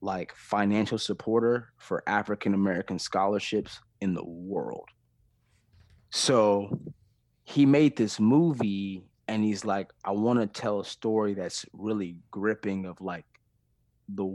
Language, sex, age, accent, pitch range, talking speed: English, male, 30-49, American, 95-115 Hz, 115 wpm